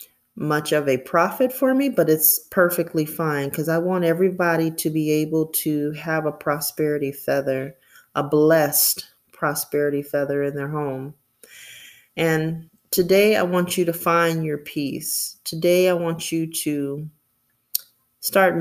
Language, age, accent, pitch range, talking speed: English, 30-49, American, 140-165 Hz, 140 wpm